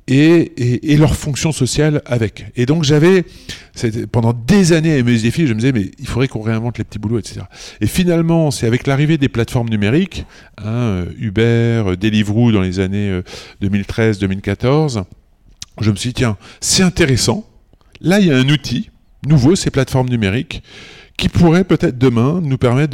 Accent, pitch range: French, 100-130 Hz